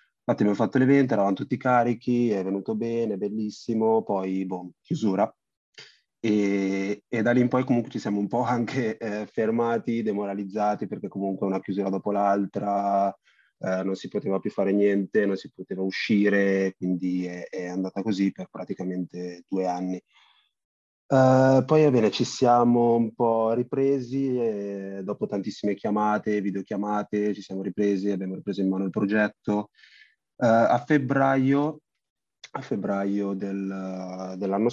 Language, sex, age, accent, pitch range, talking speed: Italian, male, 30-49, native, 95-115 Hz, 150 wpm